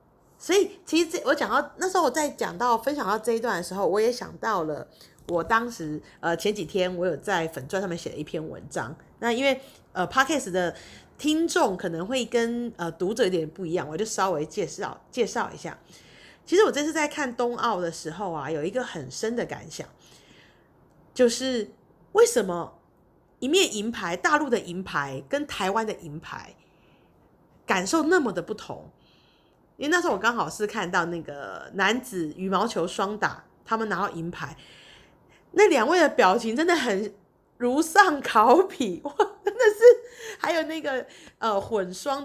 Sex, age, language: female, 30-49, Chinese